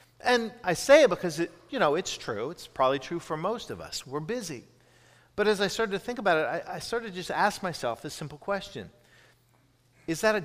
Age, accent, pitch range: 50-69, American, 125-195 Hz